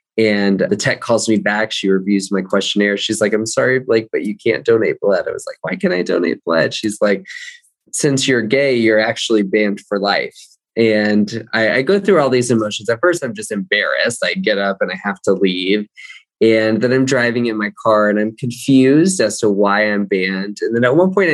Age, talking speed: 20-39, 220 wpm